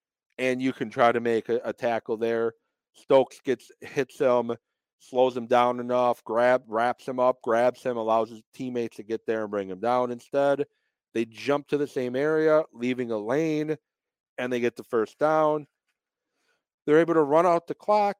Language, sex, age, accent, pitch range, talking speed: English, male, 40-59, American, 115-155 Hz, 185 wpm